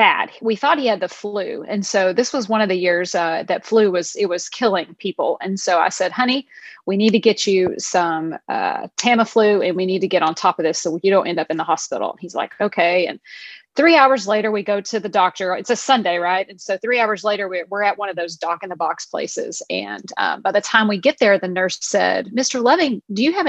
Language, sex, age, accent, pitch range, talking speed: English, female, 30-49, American, 185-240 Hz, 255 wpm